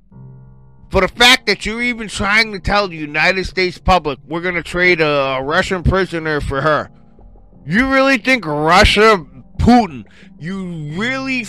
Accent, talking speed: American, 155 wpm